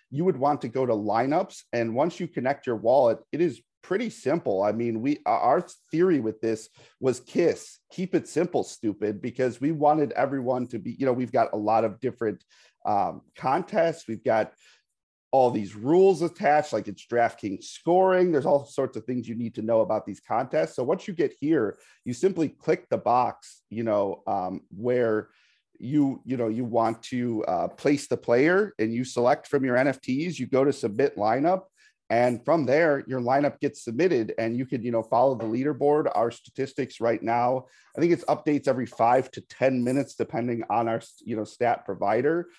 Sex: male